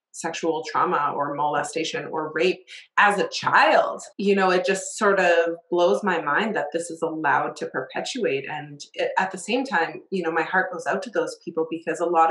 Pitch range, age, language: 165-205 Hz, 30-49, English